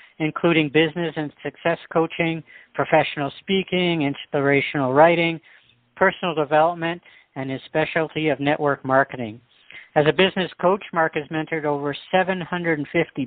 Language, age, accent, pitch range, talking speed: English, 60-79, American, 140-165 Hz, 120 wpm